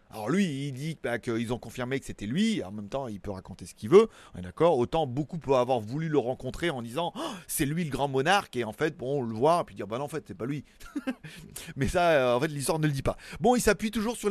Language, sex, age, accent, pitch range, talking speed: French, male, 30-49, French, 125-180 Hz, 310 wpm